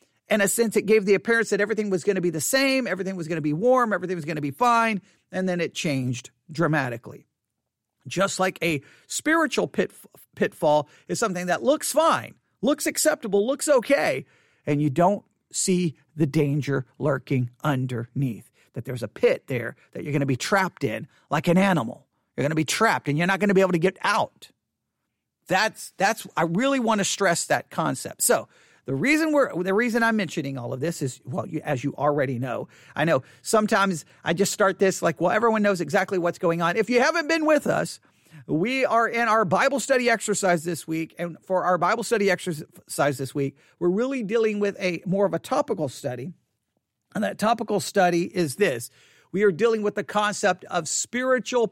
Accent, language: American, English